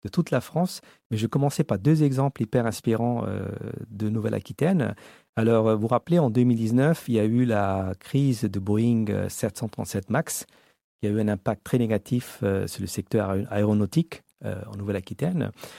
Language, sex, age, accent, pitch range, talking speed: French, male, 50-69, French, 105-140 Hz, 175 wpm